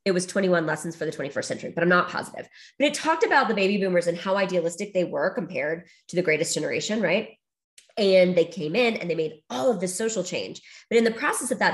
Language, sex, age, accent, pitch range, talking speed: English, female, 20-39, American, 160-200 Hz, 245 wpm